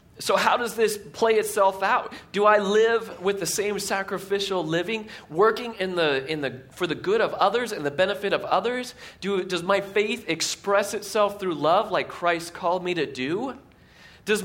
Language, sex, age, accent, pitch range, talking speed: English, male, 30-49, American, 115-195 Hz, 185 wpm